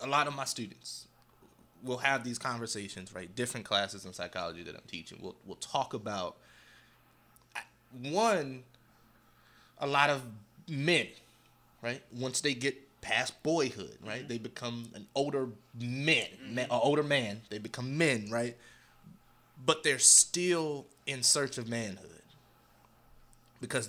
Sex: male